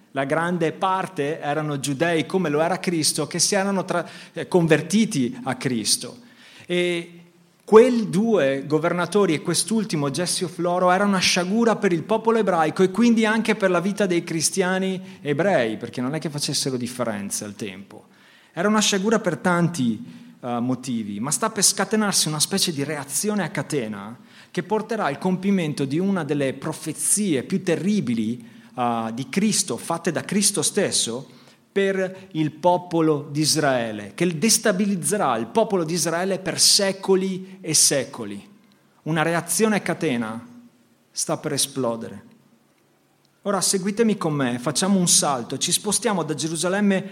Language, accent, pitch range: Italian, native, 150-195 Hz